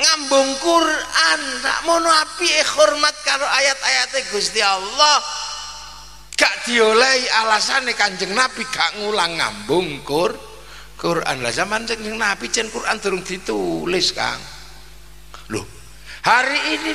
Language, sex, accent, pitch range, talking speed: Indonesian, male, native, 210-300 Hz, 115 wpm